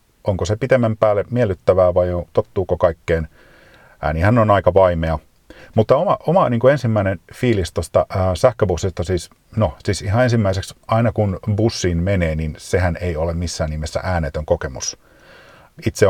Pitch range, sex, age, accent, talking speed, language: 85-105 Hz, male, 40-59, native, 140 wpm, Finnish